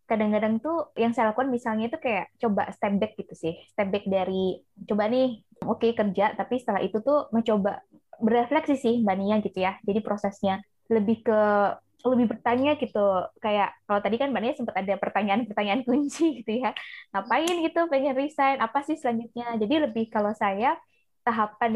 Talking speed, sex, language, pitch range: 175 wpm, female, Indonesian, 205-250 Hz